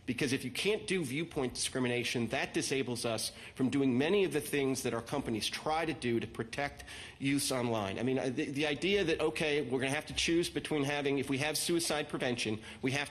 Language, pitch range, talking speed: English, 125-160 Hz, 220 wpm